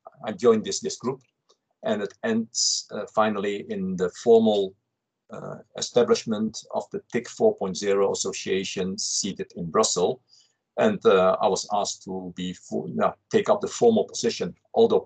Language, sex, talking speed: English, male, 145 wpm